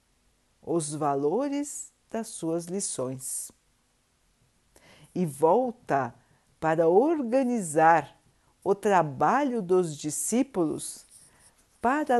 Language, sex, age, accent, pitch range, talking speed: Portuguese, female, 50-69, Brazilian, 150-220 Hz, 70 wpm